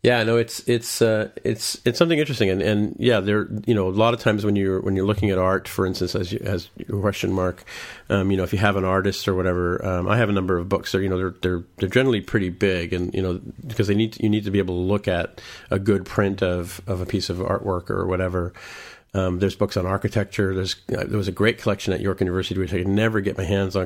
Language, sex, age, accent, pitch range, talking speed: English, male, 40-59, American, 90-105 Hz, 275 wpm